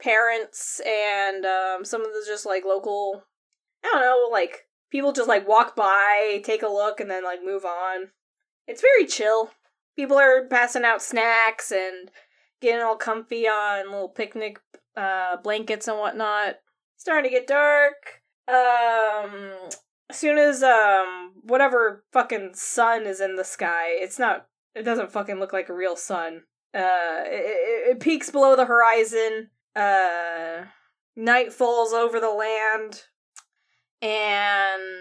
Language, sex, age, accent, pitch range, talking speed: English, female, 10-29, American, 195-255 Hz, 150 wpm